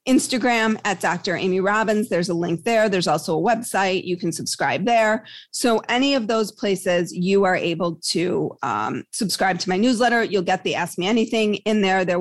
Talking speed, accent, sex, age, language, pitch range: 195 wpm, American, female, 30-49, English, 180-210 Hz